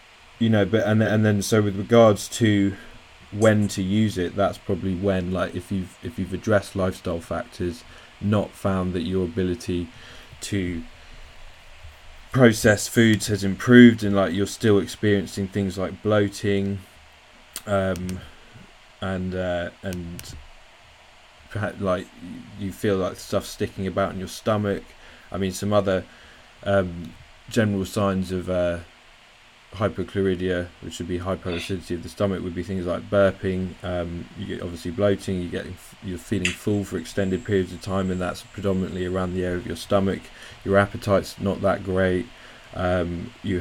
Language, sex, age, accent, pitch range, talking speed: English, male, 20-39, British, 90-100 Hz, 150 wpm